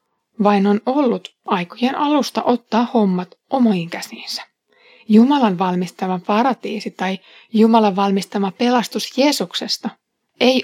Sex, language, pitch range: female, Finnish, 195-245 Hz